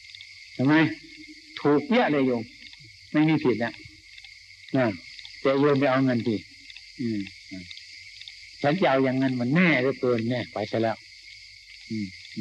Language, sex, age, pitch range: Thai, male, 60-79, 115-155 Hz